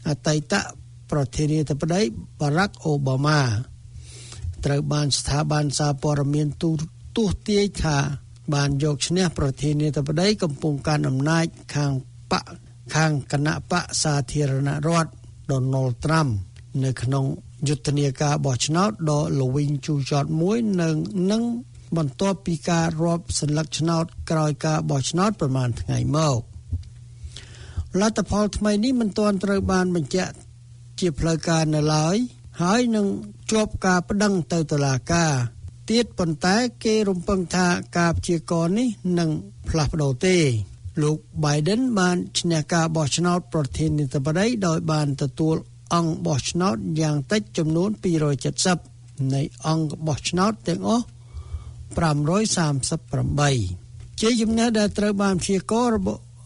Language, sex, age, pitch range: English, male, 60-79, 140-180 Hz